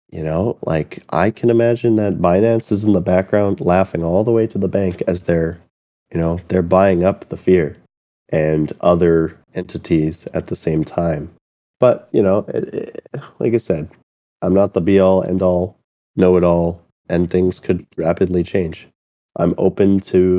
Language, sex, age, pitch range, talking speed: English, male, 20-39, 85-95 Hz, 175 wpm